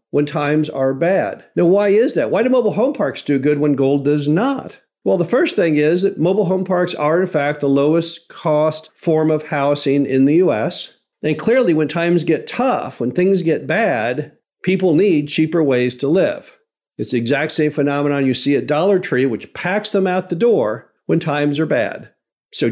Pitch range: 140-175 Hz